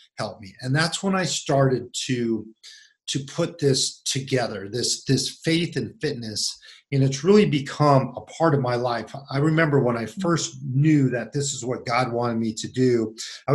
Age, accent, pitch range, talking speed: 40-59, American, 115-140 Hz, 185 wpm